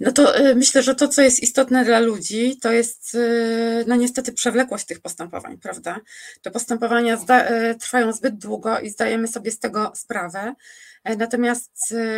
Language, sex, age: Polish, female, 30-49